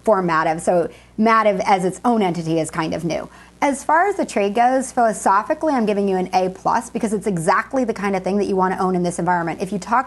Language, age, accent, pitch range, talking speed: English, 30-49, American, 190-230 Hz, 255 wpm